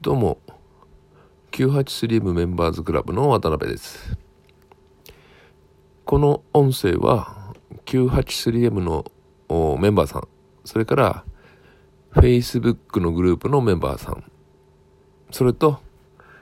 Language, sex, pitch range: Japanese, male, 80-120 Hz